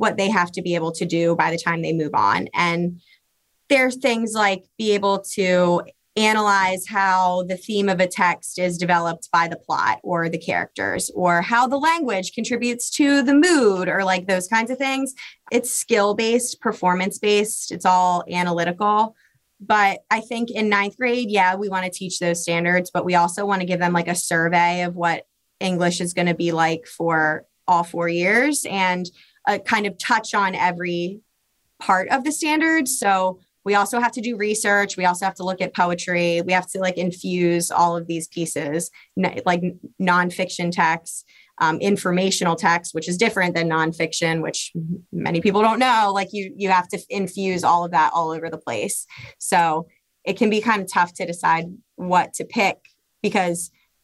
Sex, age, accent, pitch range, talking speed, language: female, 20-39, American, 175-205 Hz, 185 wpm, English